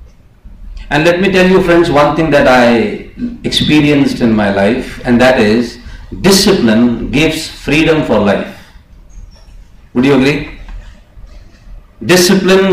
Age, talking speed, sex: 50-69, 125 wpm, male